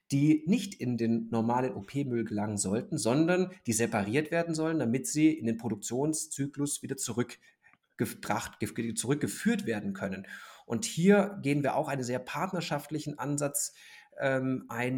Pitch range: 115-150 Hz